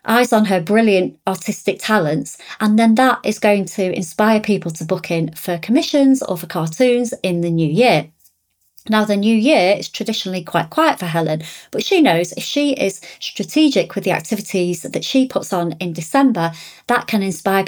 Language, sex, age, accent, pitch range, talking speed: English, female, 30-49, British, 175-225 Hz, 185 wpm